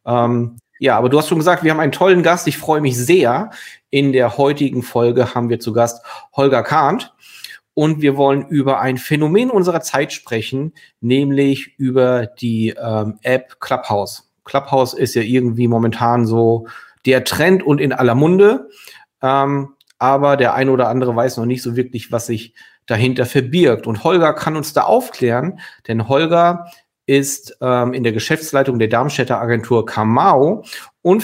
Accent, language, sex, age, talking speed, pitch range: German, German, male, 40-59, 165 wpm, 120-150 Hz